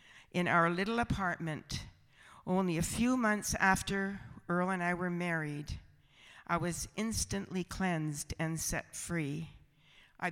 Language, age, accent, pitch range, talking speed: English, 50-69, American, 155-185 Hz, 130 wpm